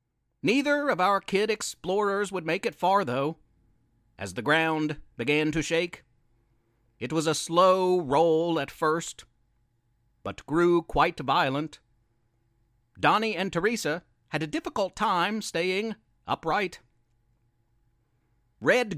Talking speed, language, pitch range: 115 wpm, English, 120-185 Hz